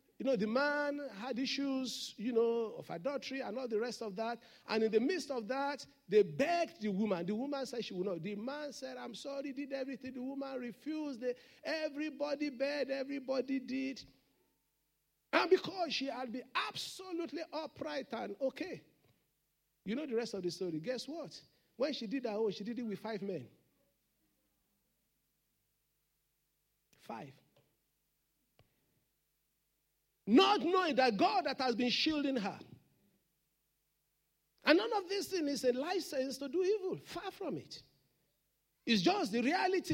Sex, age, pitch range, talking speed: male, 50-69, 245-315 Hz, 155 wpm